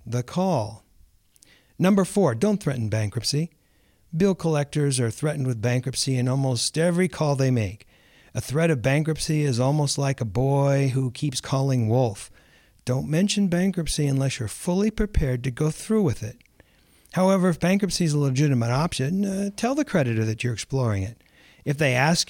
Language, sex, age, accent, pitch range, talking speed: English, male, 60-79, American, 125-175 Hz, 165 wpm